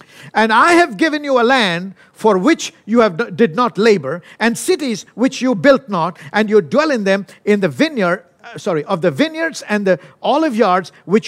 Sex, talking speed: male, 205 wpm